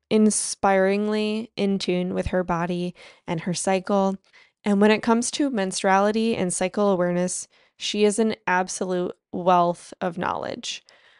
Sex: female